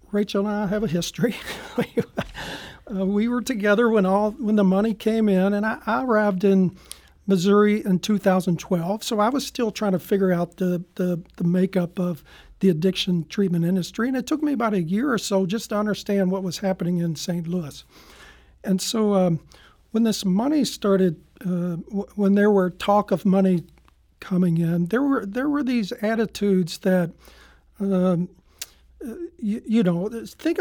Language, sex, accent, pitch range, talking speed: English, male, American, 180-215 Hz, 175 wpm